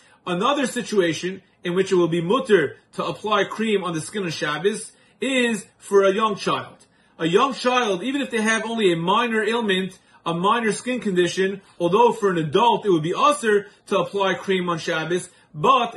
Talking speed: 190 wpm